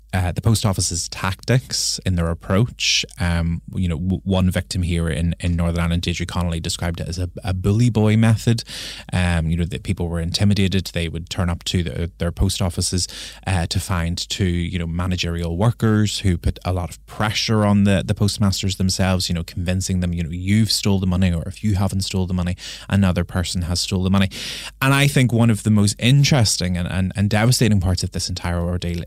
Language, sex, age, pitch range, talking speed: English, male, 20-39, 85-100 Hz, 210 wpm